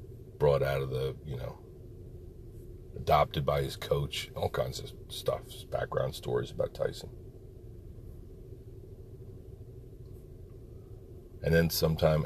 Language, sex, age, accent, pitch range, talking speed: English, male, 40-59, American, 80-120 Hz, 105 wpm